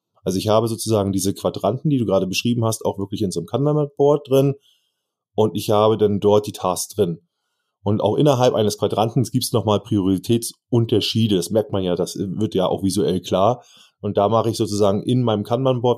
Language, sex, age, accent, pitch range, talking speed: German, male, 30-49, German, 100-115 Hz, 200 wpm